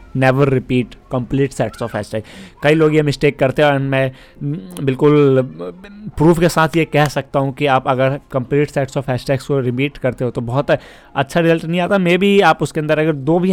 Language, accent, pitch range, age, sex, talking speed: Hindi, native, 125-150 Hz, 30-49, male, 210 wpm